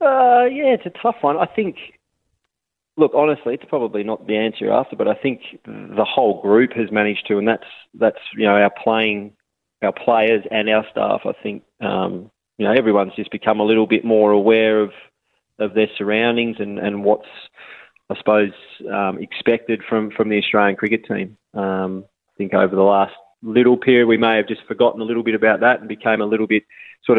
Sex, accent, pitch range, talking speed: male, Australian, 100-115 Hz, 200 wpm